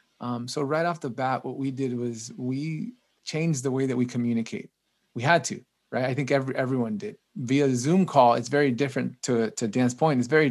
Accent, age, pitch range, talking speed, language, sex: American, 30-49, 120-140 Hz, 215 wpm, English, male